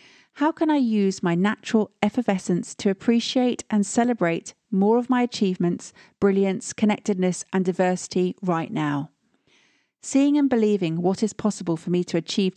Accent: British